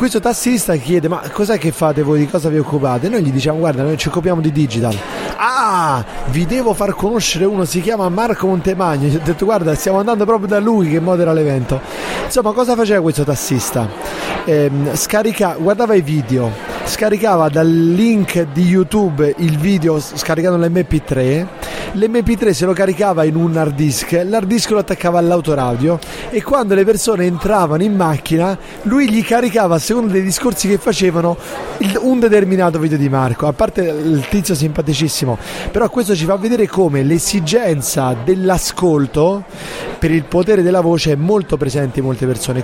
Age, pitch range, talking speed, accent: 30-49, 155-205 Hz, 170 wpm, native